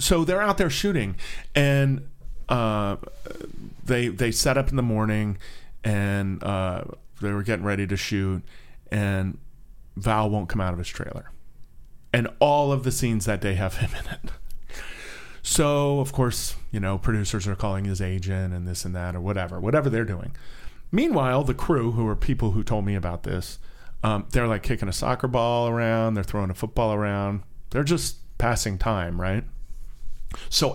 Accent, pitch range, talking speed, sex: American, 100-130 Hz, 175 wpm, male